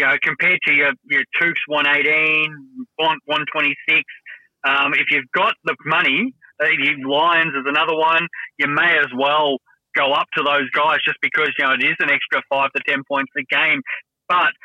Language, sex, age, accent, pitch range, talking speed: English, male, 20-39, Australian, 140-160 Hz, 190 wpm